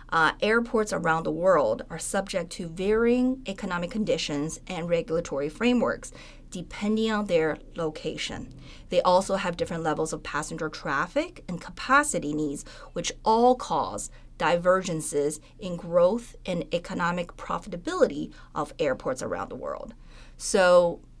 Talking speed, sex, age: 125 wpm, female, 30-49